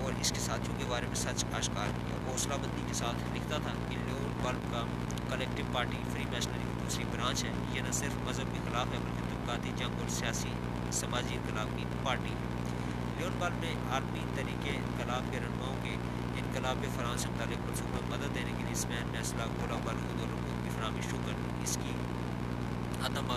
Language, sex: Urdu, male